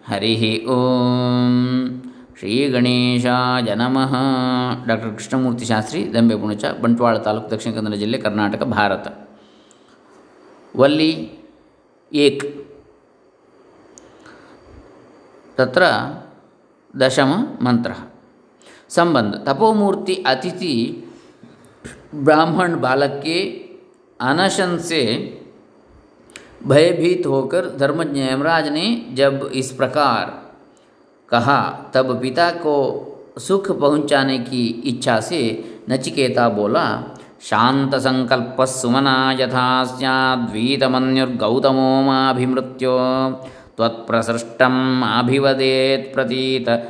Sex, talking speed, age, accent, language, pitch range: male, 80 wpm, 50-69, Indian, English, 125-140 Hz